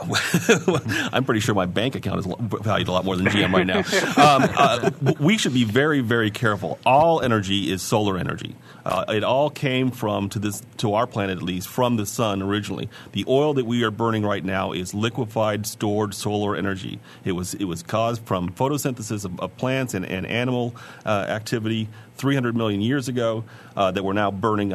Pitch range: 95-115 Hz